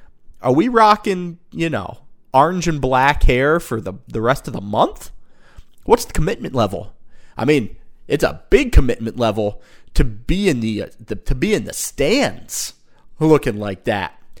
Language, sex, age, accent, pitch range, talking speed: English, male, 30-49, American, 105-150 Hz, 170 wpm